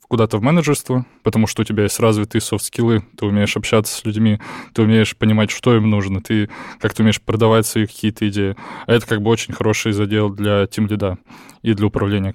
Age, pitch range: 20-39, 105-120 Hz